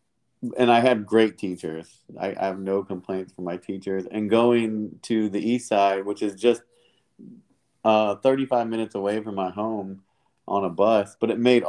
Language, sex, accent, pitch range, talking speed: English, male, American, 95-115 Hz, 180 wpm